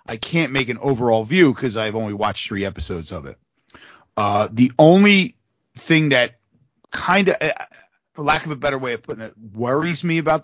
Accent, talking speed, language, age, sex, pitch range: American, 190 wpm, English, 40-59, male, 110-145 Hz